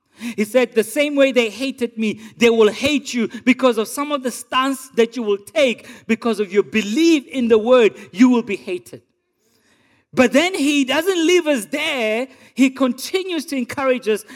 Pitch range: 205-270 Hz